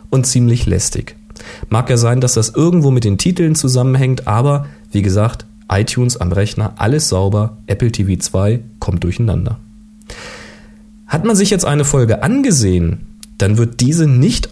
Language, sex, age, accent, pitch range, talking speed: German, male, 40-59, German, 105-140 Hz, 155 wpm